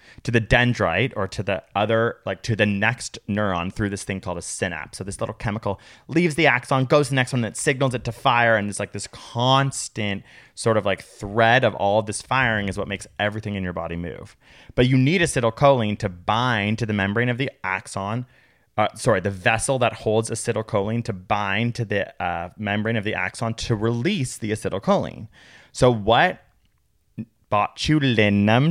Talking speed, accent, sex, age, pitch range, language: 190 wpm, American, male, 20-39, 100-120 Hz, English